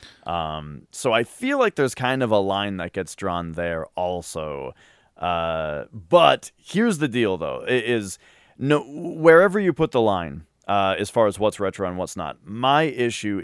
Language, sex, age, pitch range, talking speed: English, male, 30-49, 90-135 Hz, 180 wpm